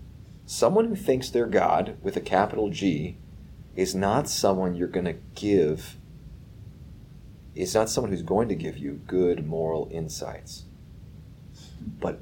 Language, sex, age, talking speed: English, male, 30-49, 140 wpm